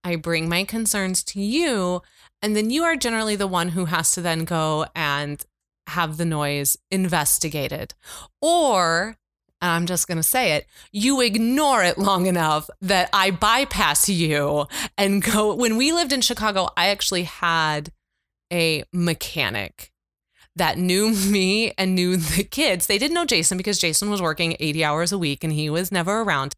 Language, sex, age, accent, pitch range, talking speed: English, female, 20-39, American, 155-205 Hz, 170 wpm